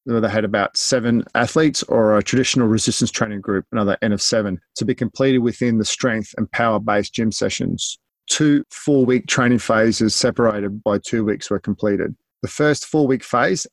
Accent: Australian